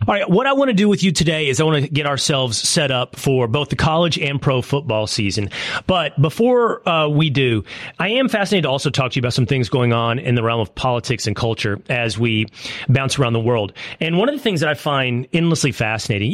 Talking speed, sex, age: 245 wpm, male, 30-49